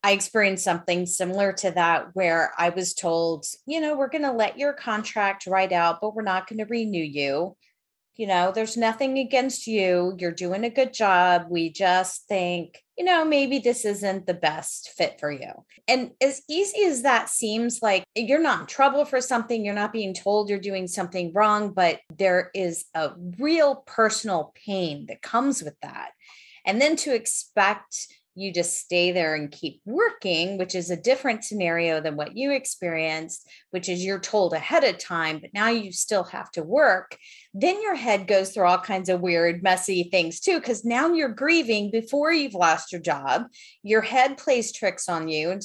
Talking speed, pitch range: 190 wpm, 175-230 Hz